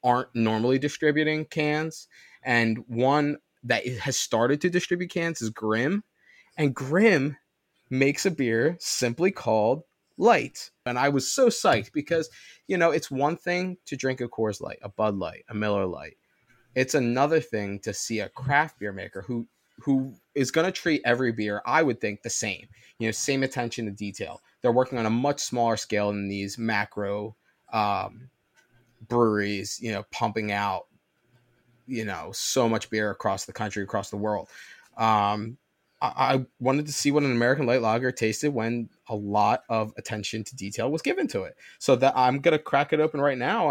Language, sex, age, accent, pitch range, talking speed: English, male, 20-39, American, 110-140 Hz, 180 wpm